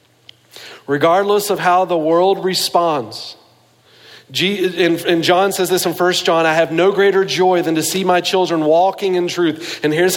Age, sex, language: 40-59, male, English